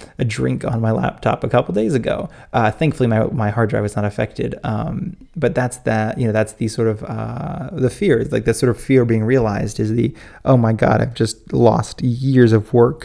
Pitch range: 110-130 Hz